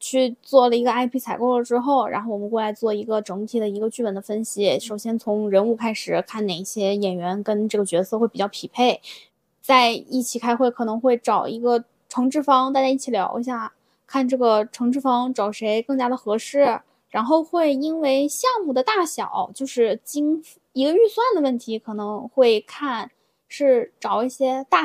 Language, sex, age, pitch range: Chinese, female, 10-29, 215-270 Hz